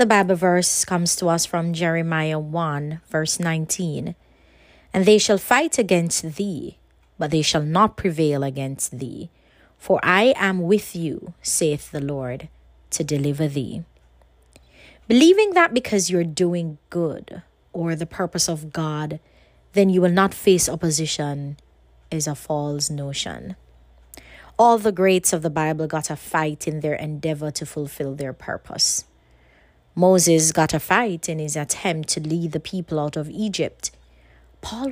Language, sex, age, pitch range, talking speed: English, female, 20-39, 150-185 Hz, 150 wpm